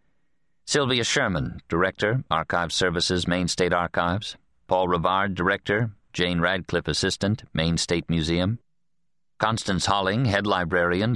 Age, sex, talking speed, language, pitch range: 50-69, male, 115 wpm, English, 85-110 Hz